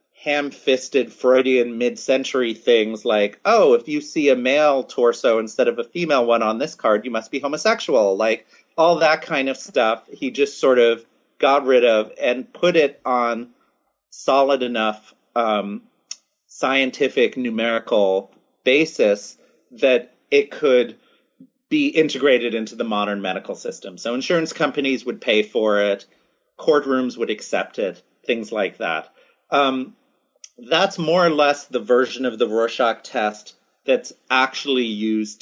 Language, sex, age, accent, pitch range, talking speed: English, male, 30-49, American, 115-170 Hz, 145 wpm